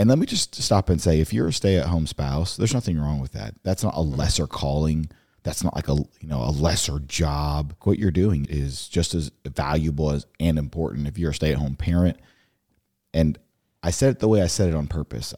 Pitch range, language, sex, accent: 75-95 Hz, English, male, American